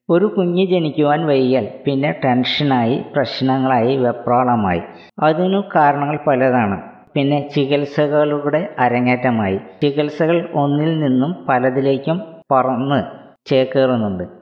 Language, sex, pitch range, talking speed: Malayalam, female, 125-150 Hz, 85 wpm